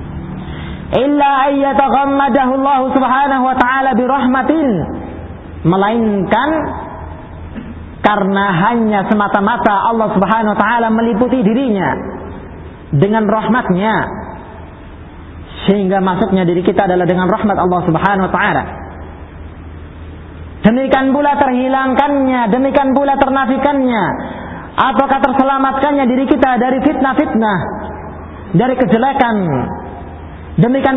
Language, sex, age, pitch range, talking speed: Filipino, male, 40-59, 180-260 Hz, 90 wpm